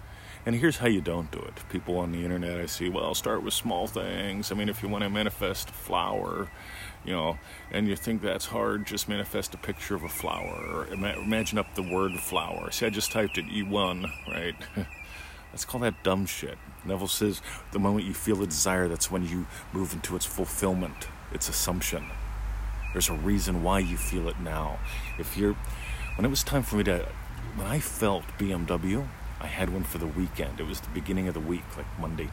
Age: 40-59